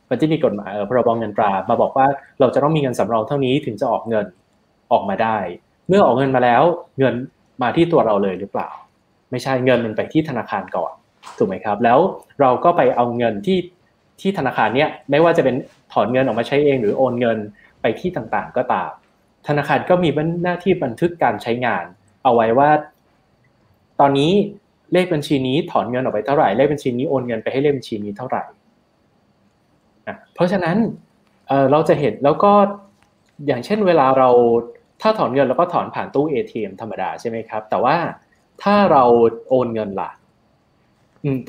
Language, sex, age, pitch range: Thai, male, 20-39, 120-170 Hz